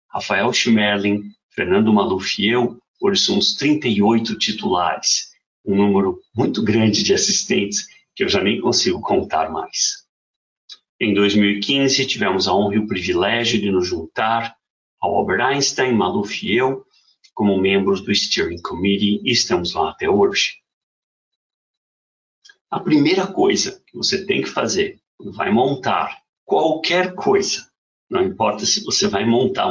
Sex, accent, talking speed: male, Brazilian, 140 wpm